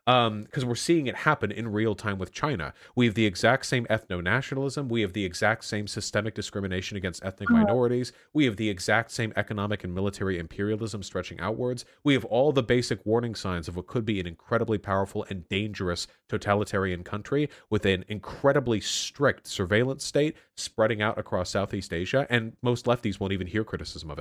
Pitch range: 100-130 Hz